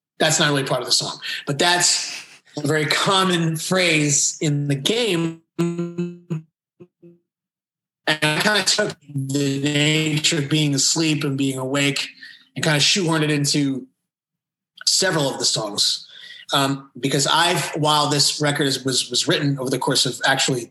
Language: English